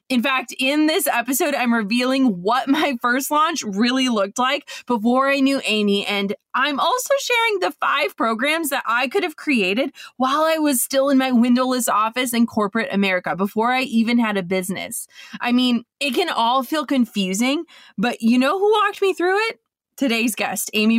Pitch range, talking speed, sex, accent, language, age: 220-280 Hz, 185 wpm, female, American, English, 20-39